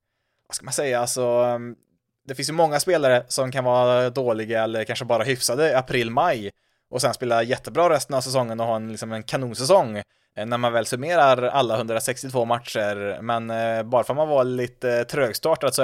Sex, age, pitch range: male, 20-39, 120-140 Hz